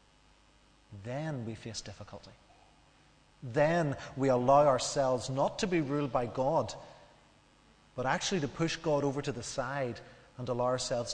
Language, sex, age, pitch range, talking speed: English, male, 30-49, 120-150 Hz, 140 wpm